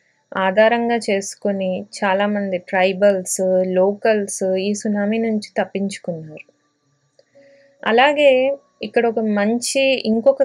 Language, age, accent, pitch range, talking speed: Telugu, 20-39, native, 195-235 Hz, 80 wpm